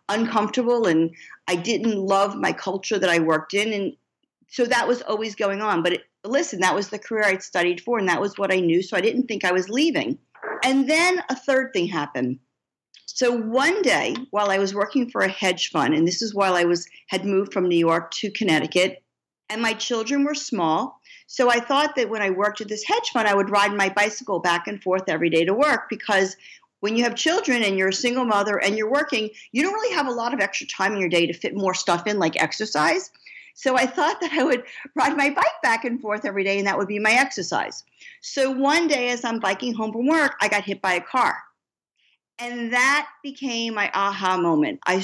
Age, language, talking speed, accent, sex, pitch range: 50-69, English, 230 wpm, American, female, 190-265 Hz